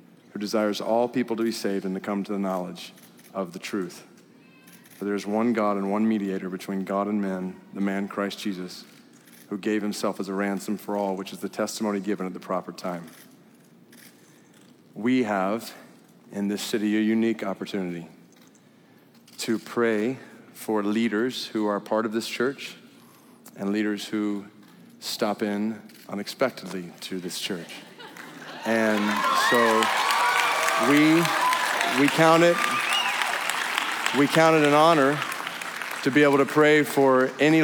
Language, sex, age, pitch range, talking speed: English, male, 40-59, 105-130 Hz, 150 wpm